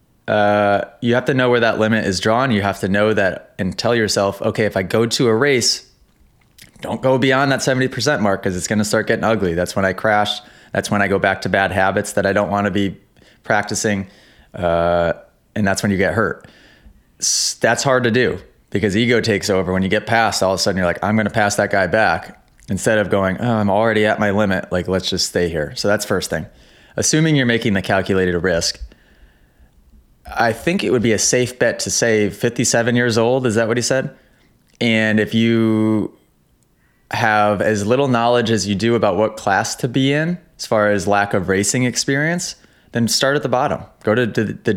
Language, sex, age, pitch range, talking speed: Polish, male, 20-39, 95-115 Hz, 215 wpm